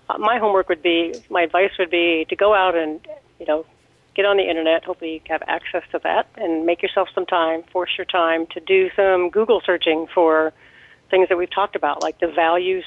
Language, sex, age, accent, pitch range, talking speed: English, female, 40-59, American, 165-195 Hz, 220 wpm